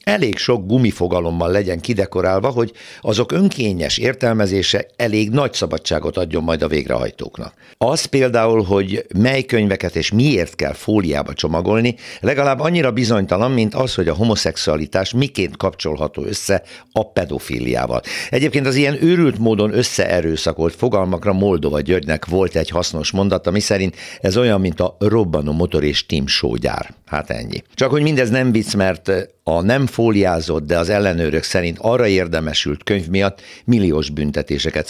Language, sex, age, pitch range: Hungarian, male, 60-79, 85-115 Hz